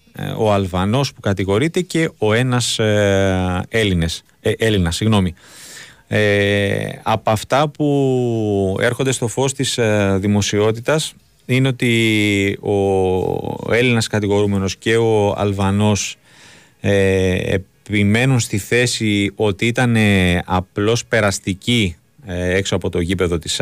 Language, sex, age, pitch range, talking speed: Greek, male, 30-49, 95-120 Hz, 105 wpm